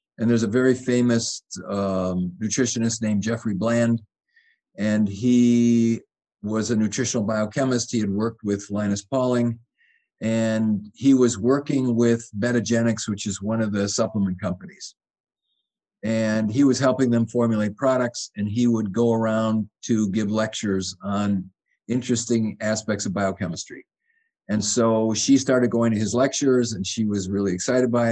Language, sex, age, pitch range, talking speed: English, male, 50-69, 105-120 Hz, 145 wpm